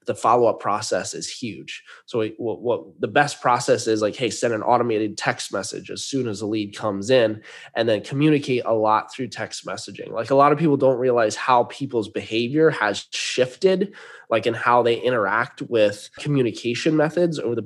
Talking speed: 190 wpm